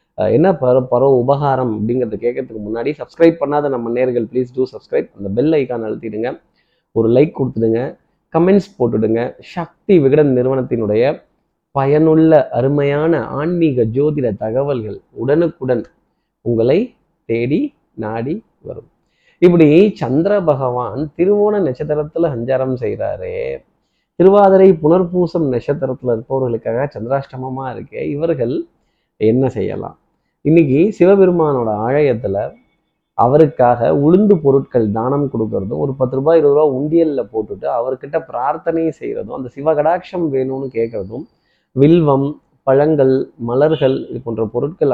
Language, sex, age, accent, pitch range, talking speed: Tamil, male, 30-49, native, 120-160 Hz, 105 wpm